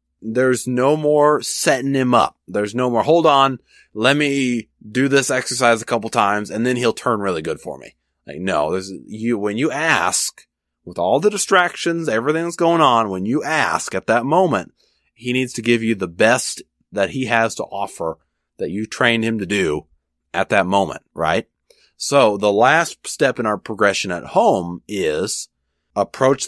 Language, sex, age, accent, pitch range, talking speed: English, male, 30-49, American, 95-125 Hz, 185 wpm